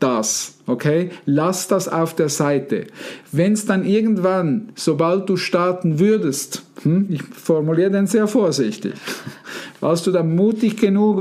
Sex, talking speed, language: male, 140 wpm, German